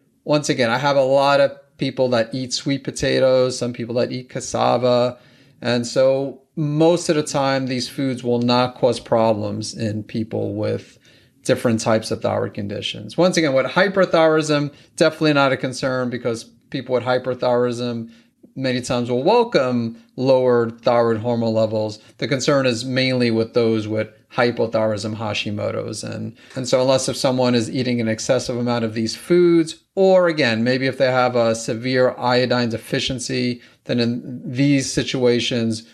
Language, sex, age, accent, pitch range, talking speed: English, male, 30-49, American, 115-135 Hz, 155 wpm